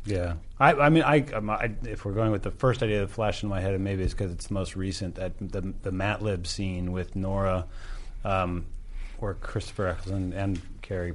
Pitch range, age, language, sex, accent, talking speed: 90-105 Hz, 30-49, English, male, American, 215 wpm